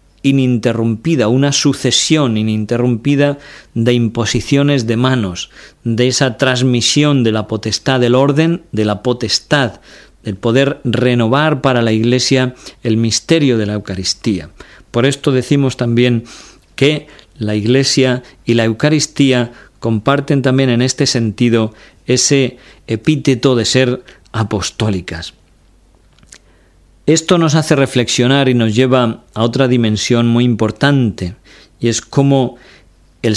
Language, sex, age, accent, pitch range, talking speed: Spanish, male, 40-59, Spanish, 115-140 Hz, 120 wpm